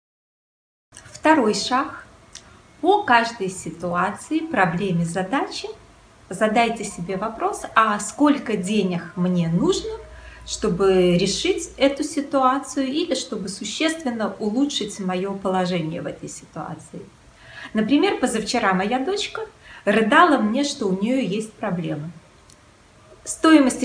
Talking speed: 100 wpm